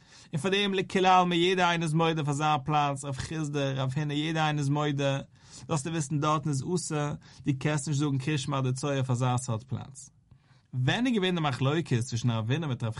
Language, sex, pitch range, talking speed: English, male, 130-170 Hz, 65 wpm